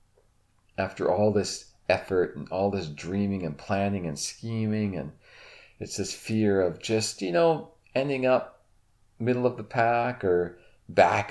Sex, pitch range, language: male, 90-120 Hz, English